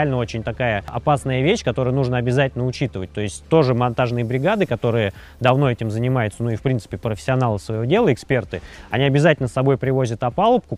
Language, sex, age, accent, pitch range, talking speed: Russian, male, 20-39, native, 115-140 Hz, 175 wpm